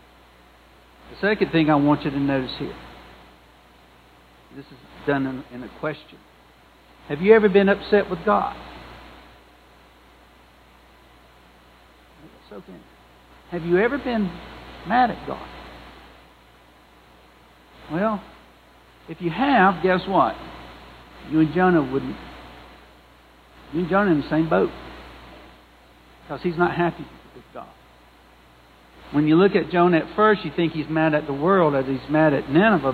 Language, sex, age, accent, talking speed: English, male, 60-79, American, 125 wpm